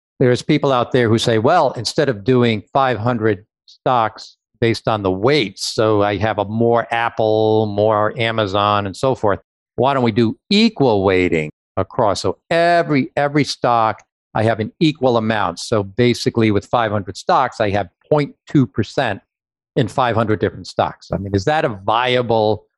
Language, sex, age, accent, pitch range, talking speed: English, male, 50-69, American, 105-130 Hz, 160 wpm